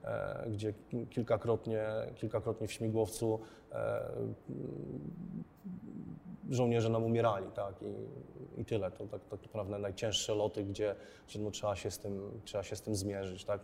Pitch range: 105-115 Hz